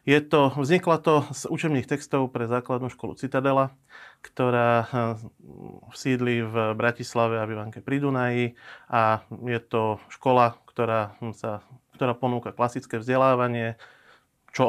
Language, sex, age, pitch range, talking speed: Slovak, male, 30-49, 115-125 Hz, 120 wpm